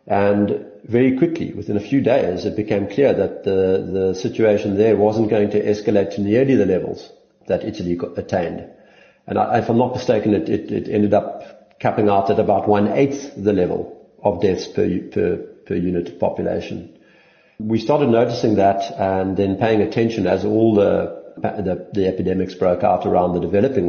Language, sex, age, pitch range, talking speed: English, male, 50-69, 100-120 Hz, 180 wpm